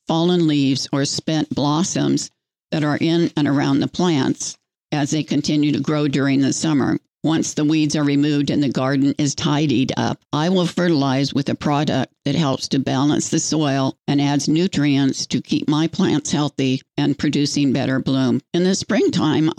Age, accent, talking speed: 60-79, American, 180 wpm